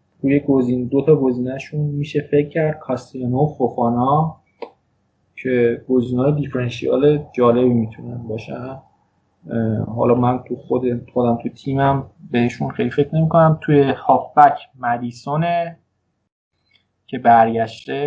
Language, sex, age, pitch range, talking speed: Persian, male, 20-39, 115-140 Hz, 110 wpm